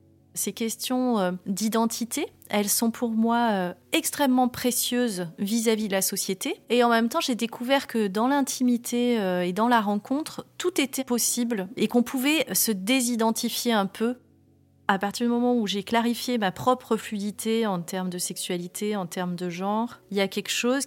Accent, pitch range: French, 190-235 Hz